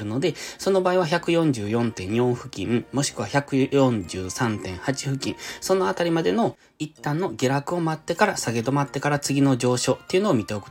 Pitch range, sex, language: 110-155 Hz, male, Japanese